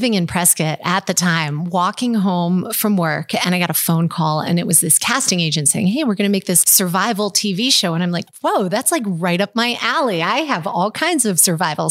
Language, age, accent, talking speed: English, 30-49, American, 235 wpm